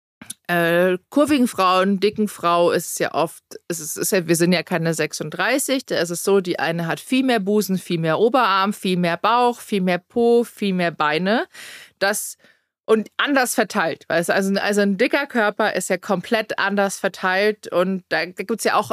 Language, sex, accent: German, female, German